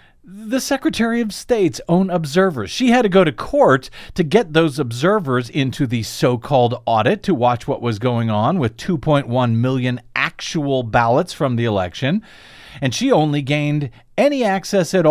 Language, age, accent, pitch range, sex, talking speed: English, 40-59, American, 120-170 Hz, male, 165 wpm